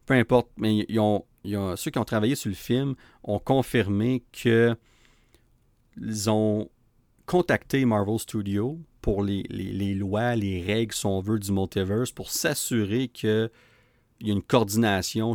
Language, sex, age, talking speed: French, male, 40-59, 155 wpm